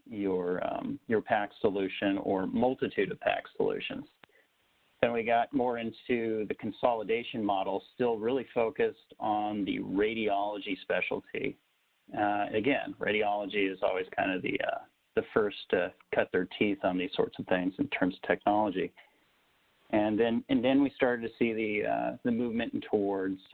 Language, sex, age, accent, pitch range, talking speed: English, male, 40-59, American, 100-140 Hz, 160 wpm